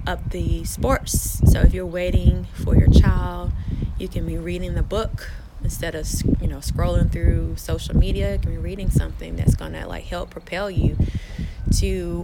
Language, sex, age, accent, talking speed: English, female, 20-39, American, 170 wpm